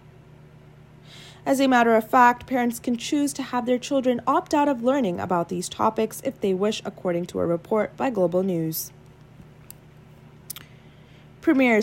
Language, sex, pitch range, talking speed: English, female, 180-245 Hz, 150 wpm